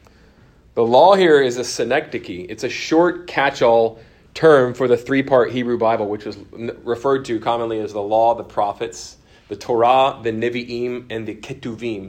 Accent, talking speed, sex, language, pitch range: American, 165 wpm, male, English, 120-170 Hz